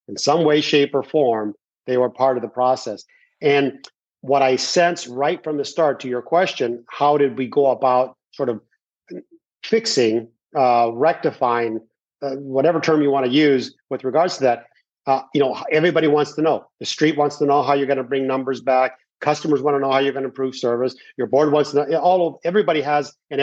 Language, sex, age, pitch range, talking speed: English, male, 40-59, 125-150 Hz, 205 wpm